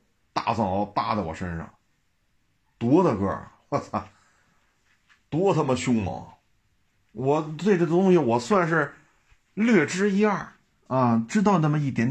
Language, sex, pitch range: Chinese, male, 105-140 Hz